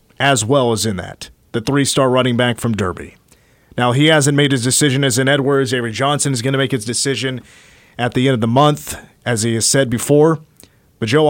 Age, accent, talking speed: 30-49, American, 220 wpm